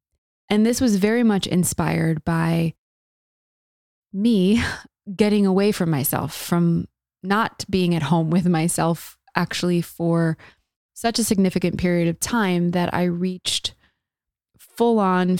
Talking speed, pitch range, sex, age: 120 wpm, 170-200 Hz, female, 20-39